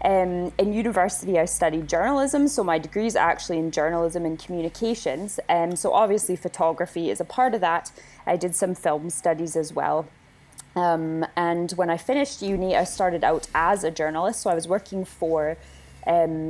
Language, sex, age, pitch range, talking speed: English, female, 20-39, 165-205 Hz, 180 wpm